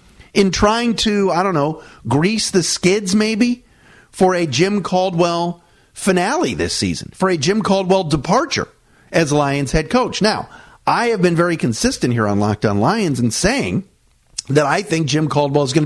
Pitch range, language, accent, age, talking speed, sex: 140-195 Hz, English, American, 50-69, 170 wpm, male